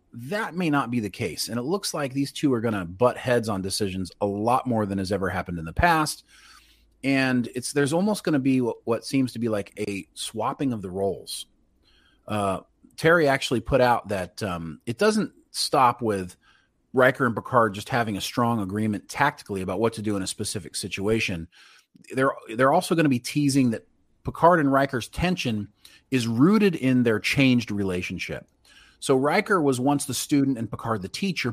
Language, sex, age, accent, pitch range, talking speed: English, male, 40-59, American, 100-135 Hz, 195 wpm